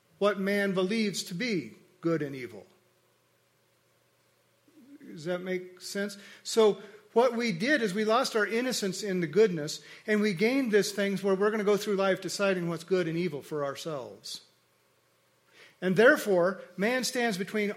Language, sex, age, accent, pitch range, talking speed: English, male, 50-69, American, 180-215 Hz, 160 wpm